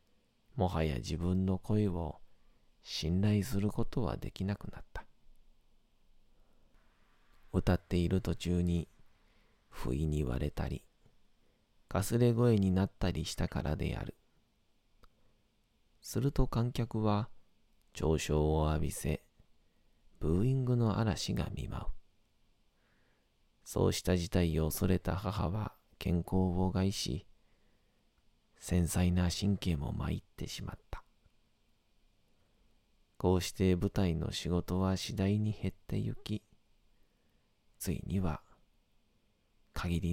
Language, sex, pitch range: Japanese, male, 85-110 Hz